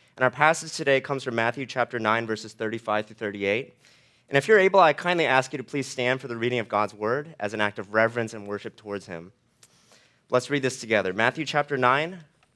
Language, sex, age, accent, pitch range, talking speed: English, male, 30-49, American, 110-150 Hz, 220 wpm